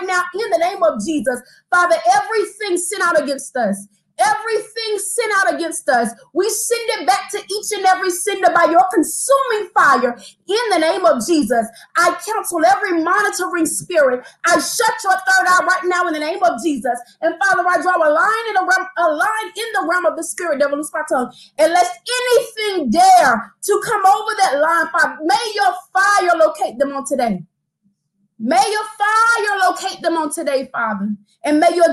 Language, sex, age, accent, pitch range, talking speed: English, female, 30-49, American, 275-380 Hz, 185 wpm